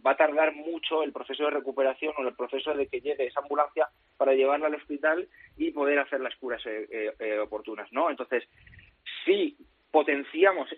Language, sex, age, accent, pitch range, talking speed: Spanish, male, 30-49, Spanish, 125-150 Hz, 180 wpm